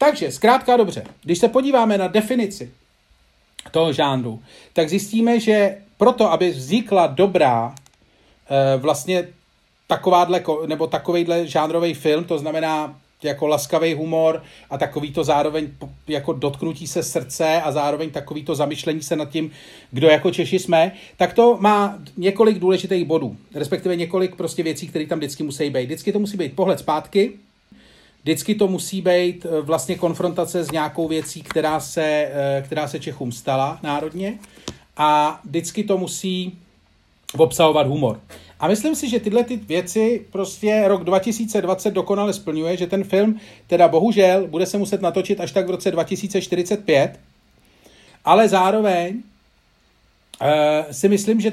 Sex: male